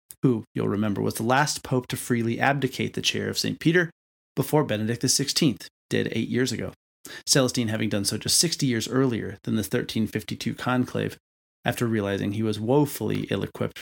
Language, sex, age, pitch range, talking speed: English, male, 30-49, 110-130 Hz, 175 wpm